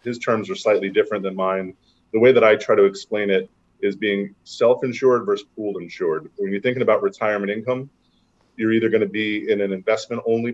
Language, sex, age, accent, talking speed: English, male, 30-49, American, 195 wpm